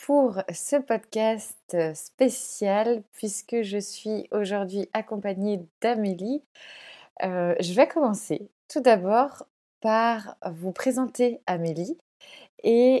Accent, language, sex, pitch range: French, French, female, 190-235 Hz